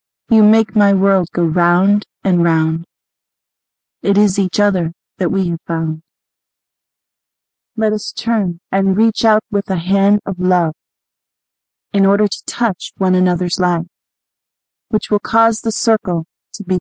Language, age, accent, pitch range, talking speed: English, 30-49, American, 175-215 Hz, 145 wpm